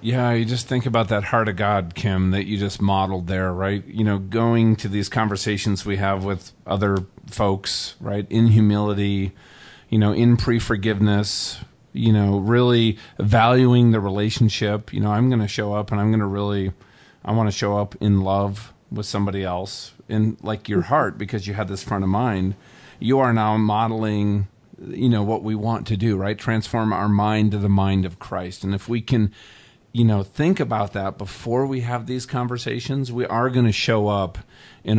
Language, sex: English, male